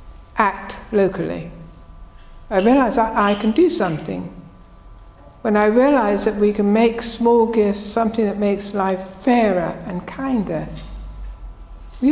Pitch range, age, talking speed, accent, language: 190-245 Hz, 60-79, 130 wpm, British, English